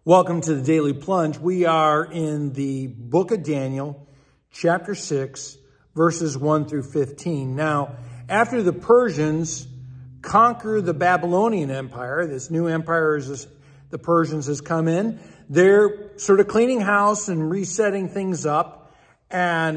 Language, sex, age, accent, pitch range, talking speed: English, male, 50-69, American, 150-200 Hz, 135 wpm